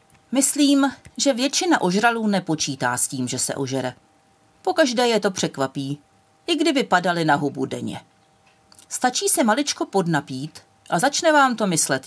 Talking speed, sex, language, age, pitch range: 145 wpm, female, Czech, 40-59, 155-250 Hz